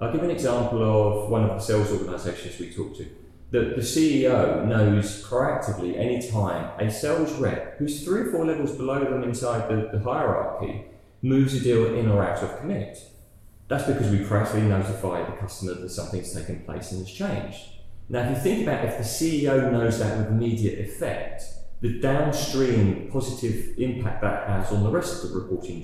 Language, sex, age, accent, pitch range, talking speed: English, male, 30-49, British, 100-130 Hz, 190 wpm